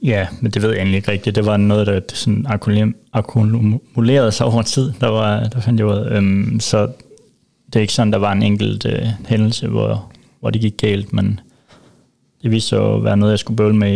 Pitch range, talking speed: 105-115 Hz, 205 wpm